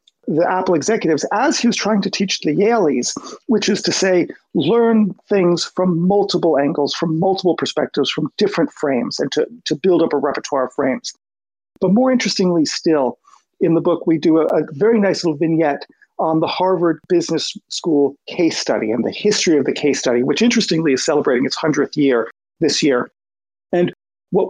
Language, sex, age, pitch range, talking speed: English, male, 40-59, 160-215 Hz, 185 wpm